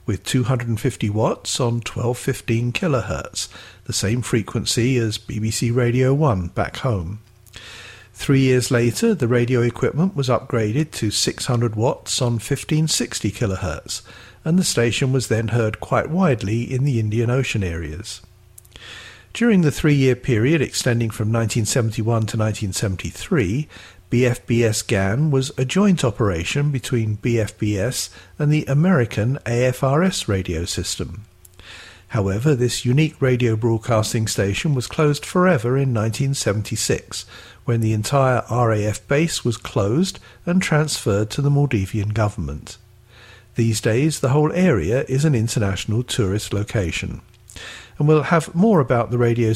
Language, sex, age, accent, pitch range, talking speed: English, male, 50-69, British, 105-135 Hz, 125 wpm